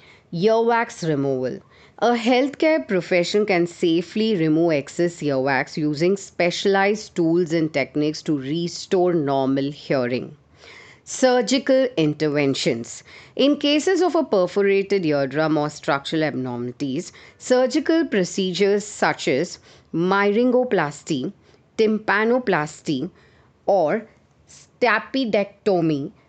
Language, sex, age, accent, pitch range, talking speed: English, female, 40-59, Indian, 145-205 Hz, 85 wpm